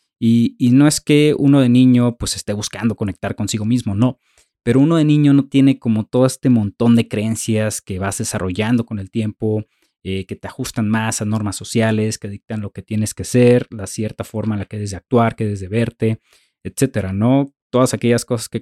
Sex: male